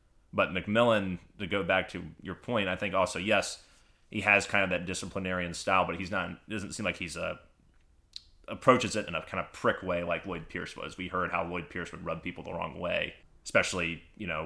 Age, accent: 30-49, American